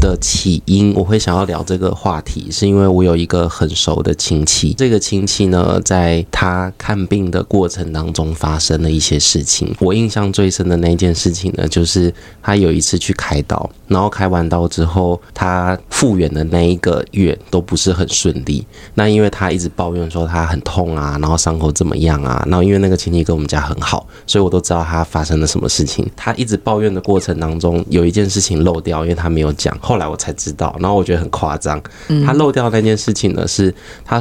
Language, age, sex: Chinese, 20-39, male